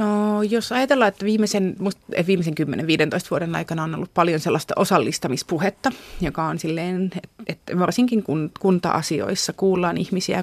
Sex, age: female, 30-49